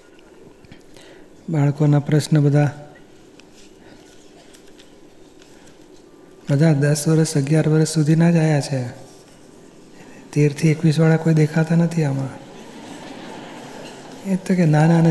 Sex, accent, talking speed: male, native, 50 wpm